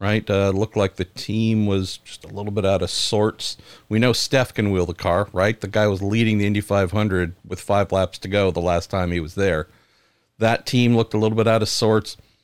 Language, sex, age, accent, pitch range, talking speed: English, male, 50-69, American, 100-110 Hz, 240 wpm